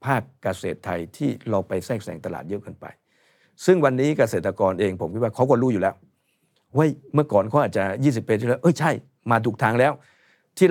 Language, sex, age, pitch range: Thai, male, 60-79, 110-145 Hz